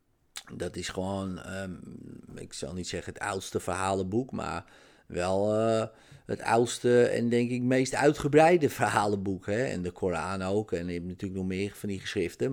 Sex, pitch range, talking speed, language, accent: male, 95-125 Hz, 170 wpm, Dutch, Dutch